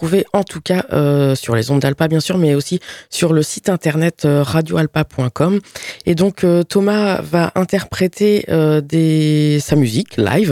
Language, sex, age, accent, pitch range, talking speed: French, female, 20-39, French, 150-190 Hz, 160 wpm